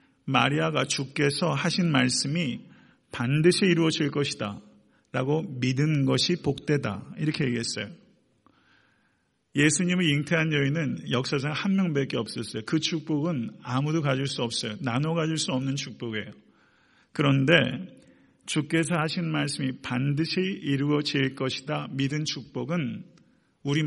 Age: 40-59